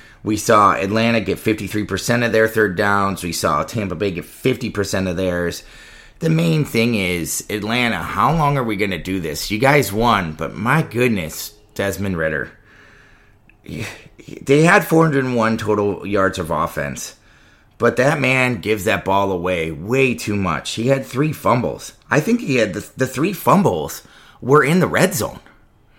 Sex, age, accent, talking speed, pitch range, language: male, 30-49, American, 165 wpm, 95-120 Hz, English